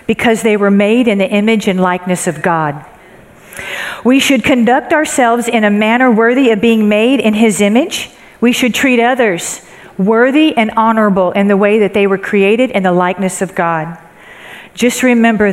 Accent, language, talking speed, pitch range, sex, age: American, English, 180 wpm, 195-240 Hz, female, 50-69